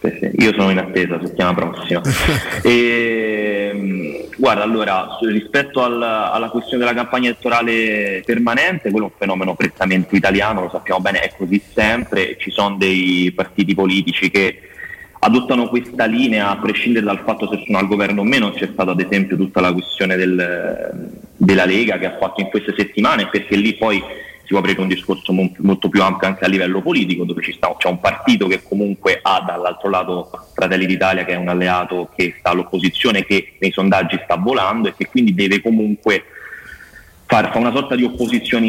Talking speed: 175 wpm